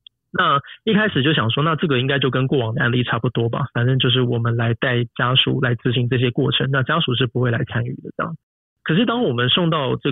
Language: Chinese